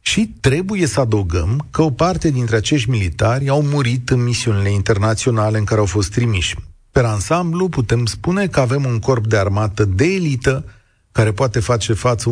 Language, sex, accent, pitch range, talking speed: Romanian, male, native, 105-140 Hz, 175 wpm